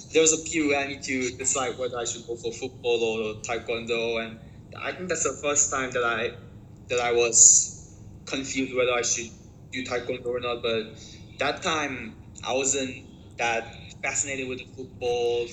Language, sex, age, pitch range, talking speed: English, male, 20-39, 110-130 Hz, 180 wpm